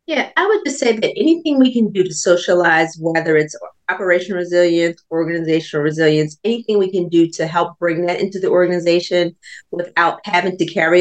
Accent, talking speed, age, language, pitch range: American, 180 wpm, 30-49, English, 150-185 Hz